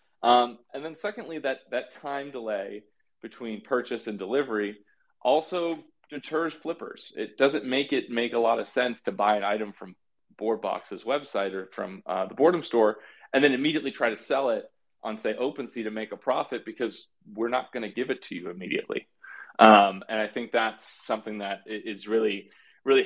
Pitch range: 105-125 Hz